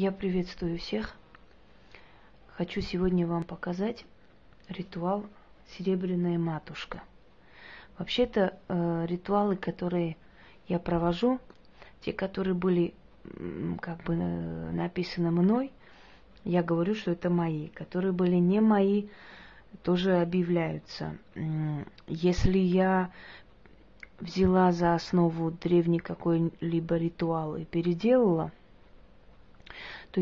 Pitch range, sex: 170-190 Hz, female